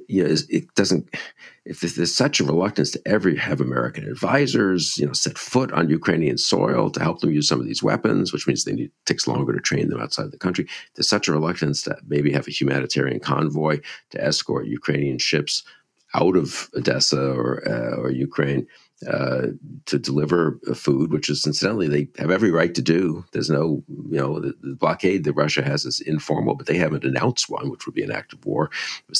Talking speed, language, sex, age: 205 wpm, English, male, 50-69